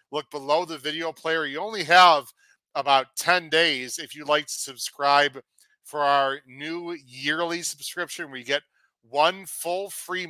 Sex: male